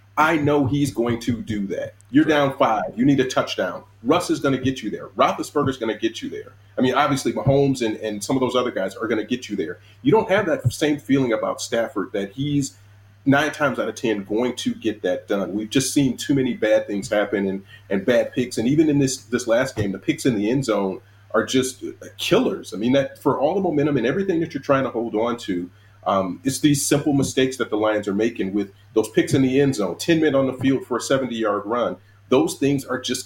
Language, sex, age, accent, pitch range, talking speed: English, male, 40-59, American, 105-140 Hz, 250 wpm